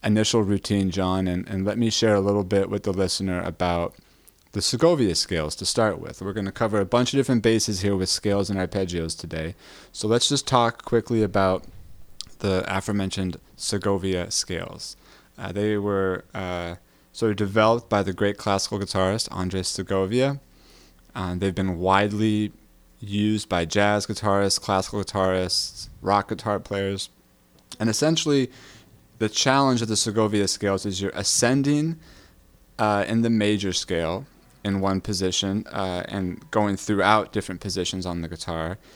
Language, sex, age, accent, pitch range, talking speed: English, male, 20-39, American, 90-105 Hz, 155 wpm